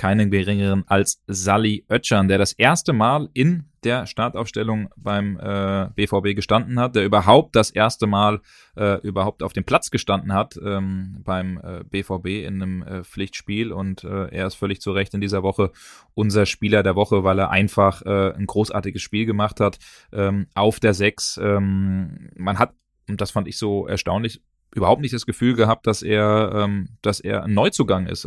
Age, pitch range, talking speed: 20-39, 100-115 Hz, 180 wpm